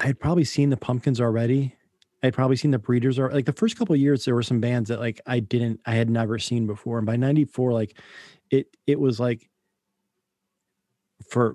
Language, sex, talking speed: English, male, 220 wpm